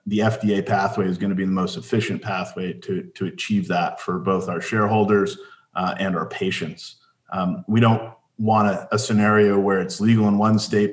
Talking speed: 200 wpm